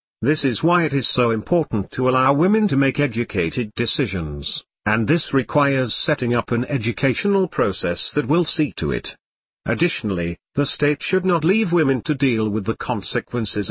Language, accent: English, British